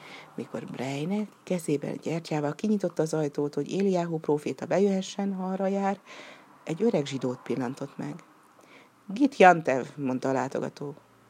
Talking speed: 120 wpm